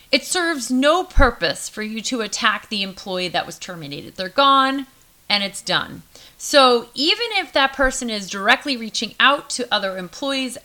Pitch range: 195-260 Hz